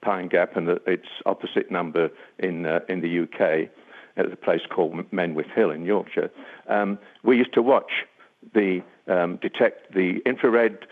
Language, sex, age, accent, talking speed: English, male, 60-79, British, 165 wpm